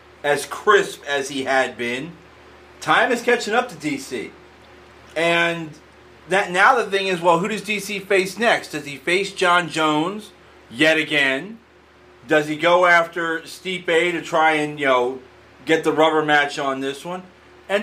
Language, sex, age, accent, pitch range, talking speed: English, male, 30-49, American, 150-190 Hz, 170 wpm